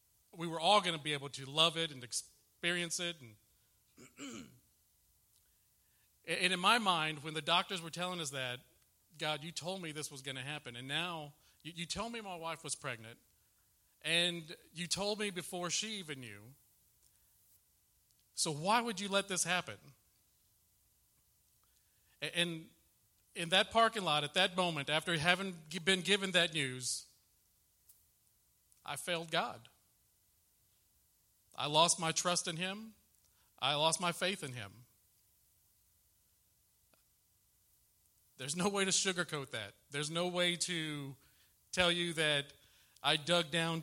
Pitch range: 120-175 Hz